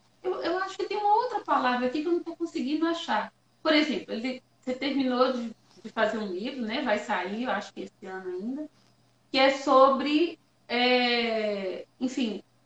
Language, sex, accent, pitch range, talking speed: Portuguese, female, Brazilian, 255-355 Hz, 185 wpm